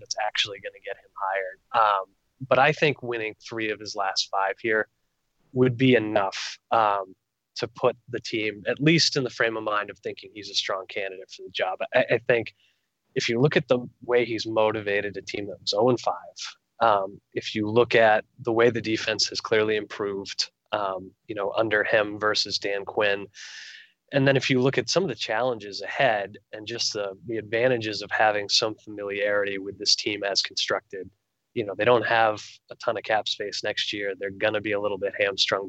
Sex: male